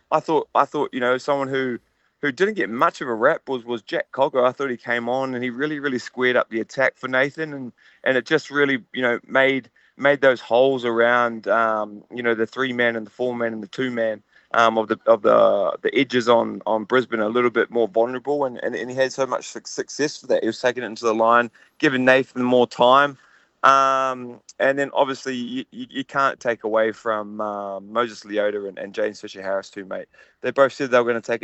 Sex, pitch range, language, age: male, 110-130 Hz, English, 20-39